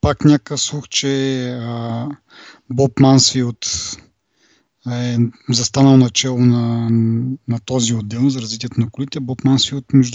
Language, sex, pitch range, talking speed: Bulgarian, male, 120-140 Hz, 125 wpm